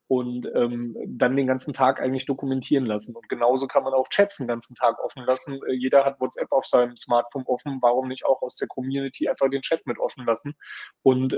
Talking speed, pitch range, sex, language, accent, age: 210 wpm, 125-145 Hz, male, German, German, 30-49